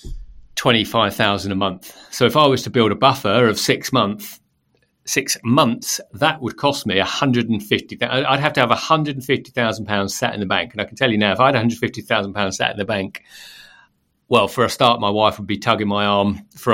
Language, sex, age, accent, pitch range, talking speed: English, male, 40-59, British, 105-135 Hz, 260 wpm